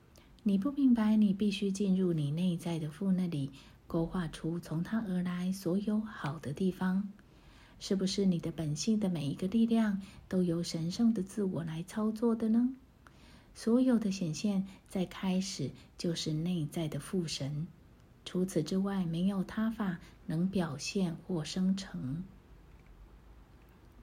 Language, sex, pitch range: Chinese, female, 160-200 Hz